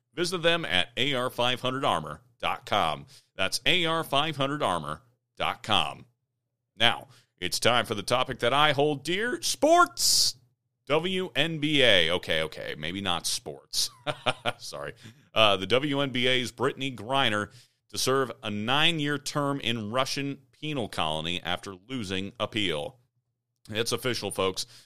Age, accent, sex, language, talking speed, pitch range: 40-59, American, male, English, 105 wpm, 105-130 Hz